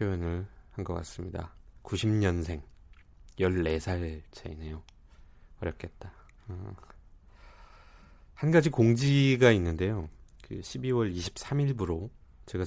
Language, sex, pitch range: Korean, male, 80-105 Hz